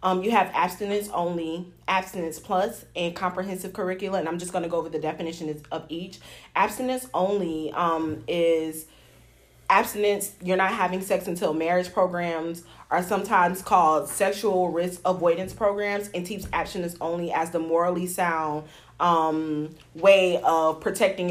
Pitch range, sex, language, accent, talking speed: 170-200 Hz, female, English, American, 145 wpm